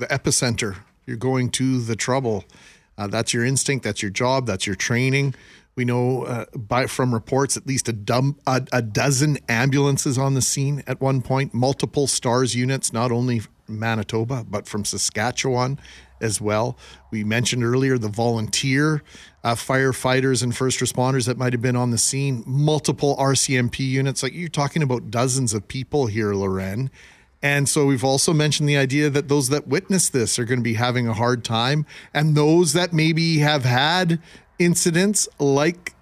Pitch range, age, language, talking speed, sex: 125-145 Hz, 40-59, English, 175 wpm, male